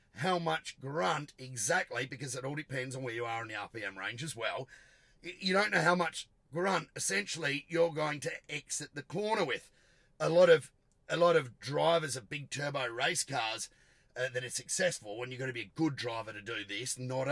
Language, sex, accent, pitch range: English, male, Australian, 125-160 Hz